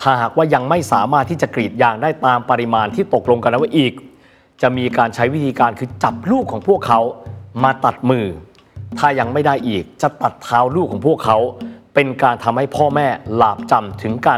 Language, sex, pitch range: Thai, male, 110-135 Hz